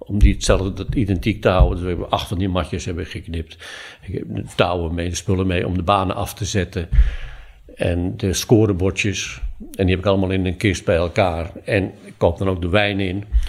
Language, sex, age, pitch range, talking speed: Dutch, male, 60-79, 95-110 Hz, 225 wpm